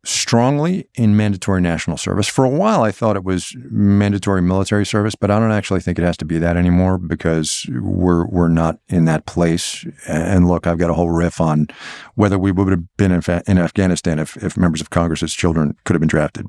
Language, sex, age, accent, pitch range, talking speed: English, male, 50-69, American, 85-105 Hz, 210 wpm